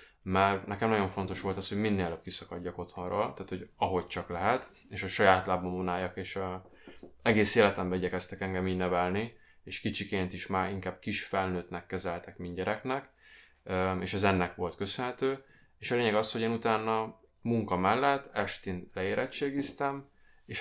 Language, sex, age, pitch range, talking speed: Hungarian, male, 20-39, 95-110 Hz, 160 wpm